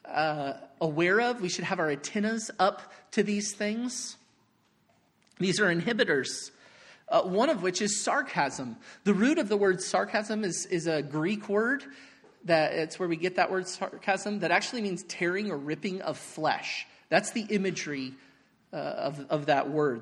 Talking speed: 170 wpm